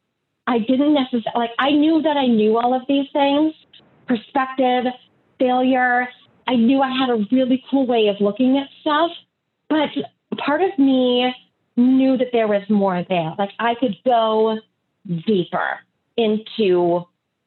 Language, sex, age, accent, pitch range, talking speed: English, female, 30-49, American, 185-245 Hz, 150 wpm